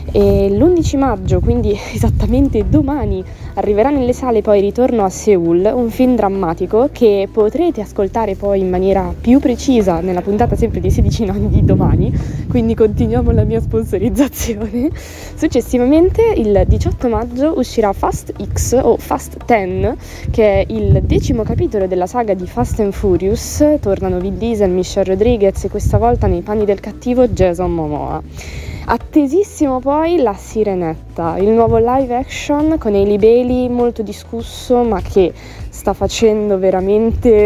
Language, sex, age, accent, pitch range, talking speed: Italian, female, 20-39, native, 180-245 Hz, 145 wpm